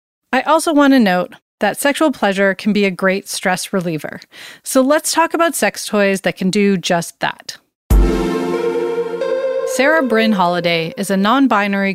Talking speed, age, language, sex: 155 wpm, 30-49, English, female